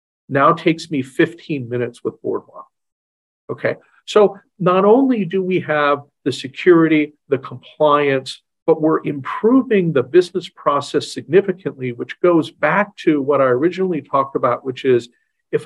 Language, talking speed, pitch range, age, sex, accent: English, 140 wpm, 130-180 Hz, 50-69, male, American